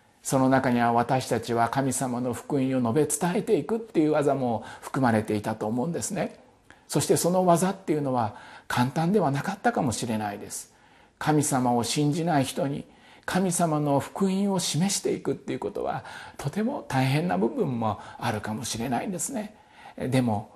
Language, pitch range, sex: Japanese, 125-195 Hz, male